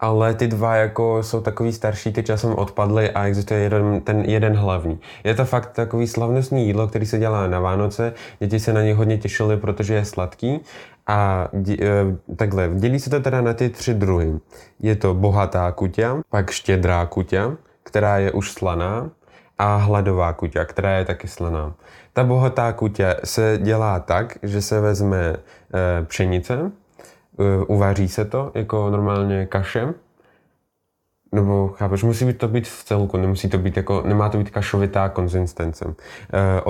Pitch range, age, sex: 95-110 Hz, 20-39, male